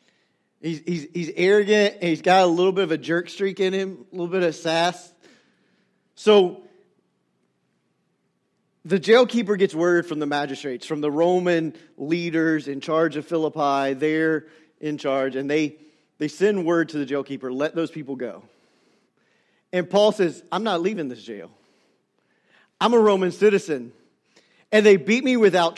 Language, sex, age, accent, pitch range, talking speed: English, male, 40-59, American, 160-220 Hz, 160 wpm